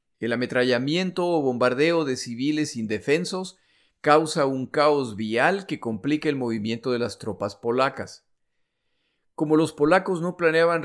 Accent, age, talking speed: Mexican, 50-69, 135 wpm